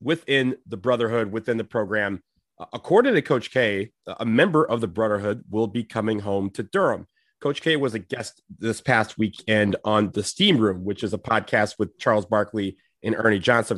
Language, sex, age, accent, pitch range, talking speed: English, male, 30-49, American, 105-125 Hz, 185 wpm